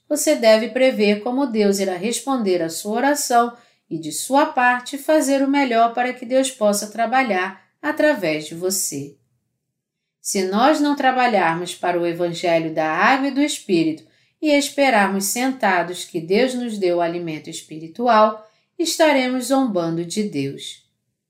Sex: female